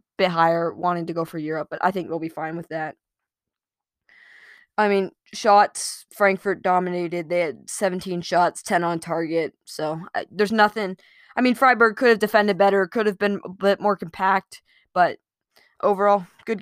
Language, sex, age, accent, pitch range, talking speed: English, female, 20-39, American, 180-220 Hz, 175 wpm